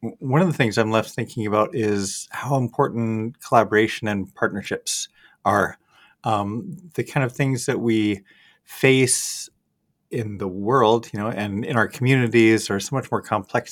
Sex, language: male, English